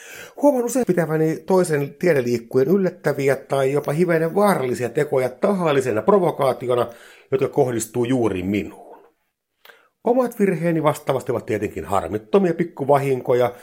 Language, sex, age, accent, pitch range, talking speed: Finnish, male, 60-79, native, 125-180 Hz, 105 wpm